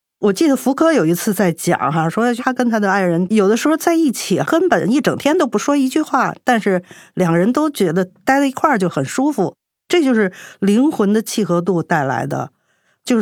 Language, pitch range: Chinese, 175-255 Hz